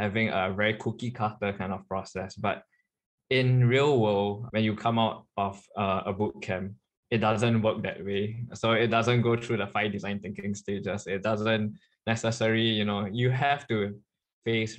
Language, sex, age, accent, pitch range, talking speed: English, male, 20-39, Malaysian, 100-115 Hz, 175 wpm